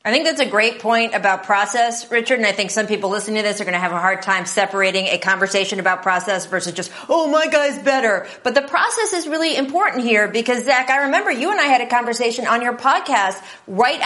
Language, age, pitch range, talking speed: English, 40-59, 200-275 Hz, 240 wpm